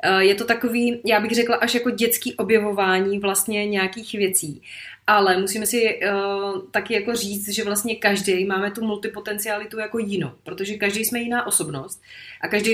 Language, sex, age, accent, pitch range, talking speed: Czech, female, 30-49, native, 185-225 Hz, 165 wpm